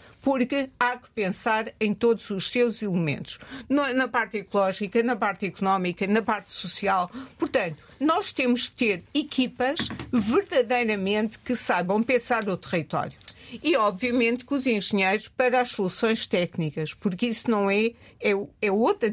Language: Portuguese